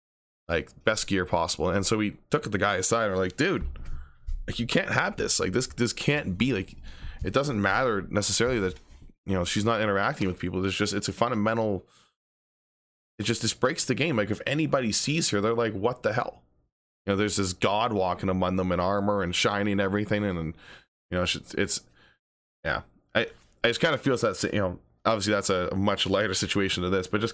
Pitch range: 90-110 Hz